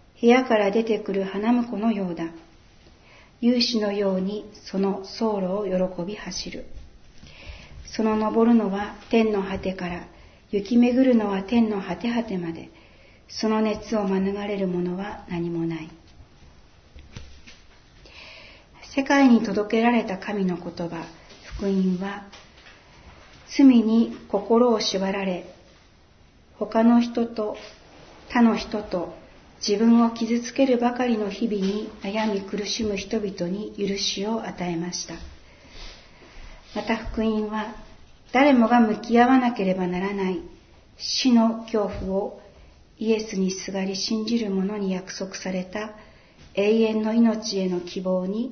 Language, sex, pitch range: Japanese, female, 185-230 Hz